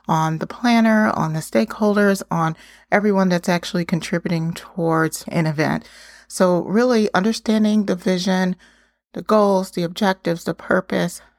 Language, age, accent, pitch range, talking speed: English, 30-49, American, 170-195 Hz, 130 wpm